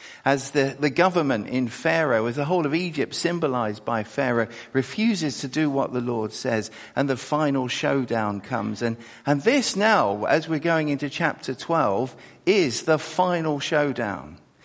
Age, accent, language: 50-69, British, English